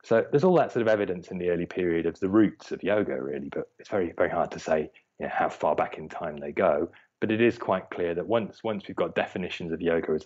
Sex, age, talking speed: male, 30-49, 275 wpm